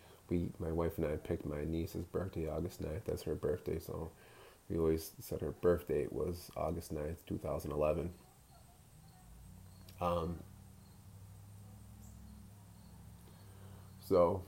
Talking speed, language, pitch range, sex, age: 115 wpm, English, 80-95 Hz, male, 20-39